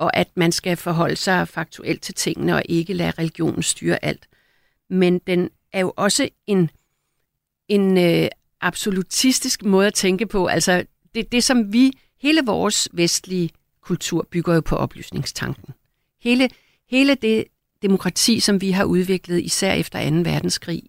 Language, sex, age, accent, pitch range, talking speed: Danish, female, 50-69, native, 170-210 Hz, 150 wpm